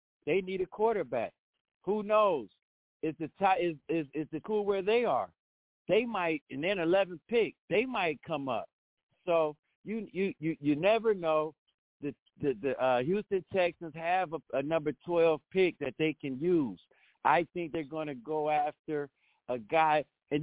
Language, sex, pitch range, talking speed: English, male, 145-195 Hz, 175 wpm